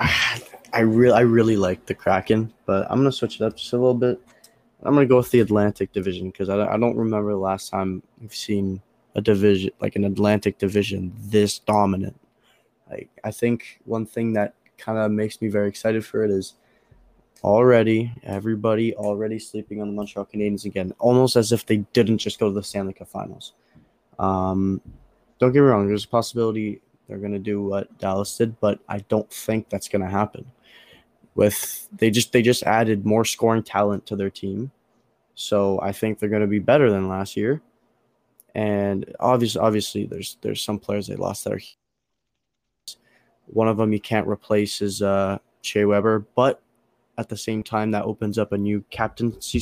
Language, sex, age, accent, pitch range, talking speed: English, male, 20-39, American, 100-110 Hz, 185 wpm